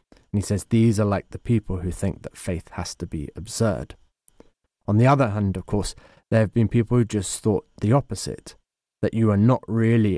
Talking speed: 205 wpm